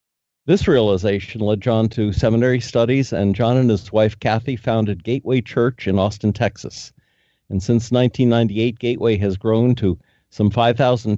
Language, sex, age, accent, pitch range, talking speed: English, male, 50-69, American, 105-125 Hz, 150 wpm